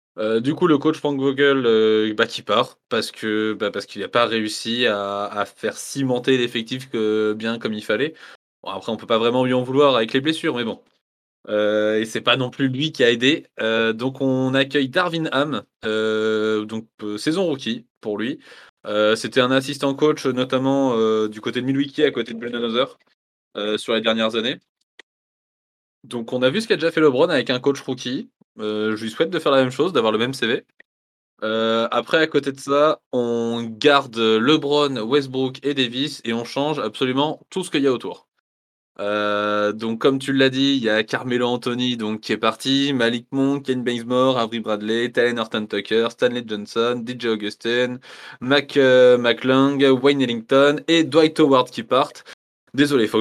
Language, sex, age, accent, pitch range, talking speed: French, male, 20-39, French, 110-140 Hz, 200 wpm